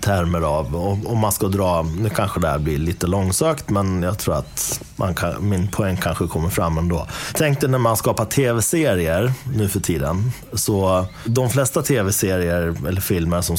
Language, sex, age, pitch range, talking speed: Swedish, male, 30-49, 85-115 Hz, 180 wpm